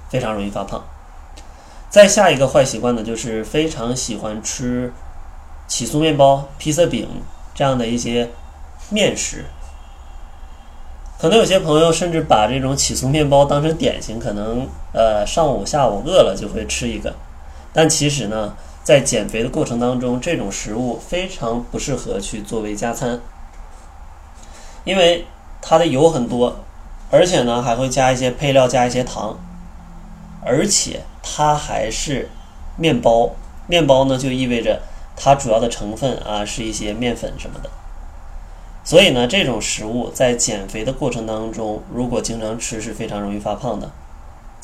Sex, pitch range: male, 90-135 Hz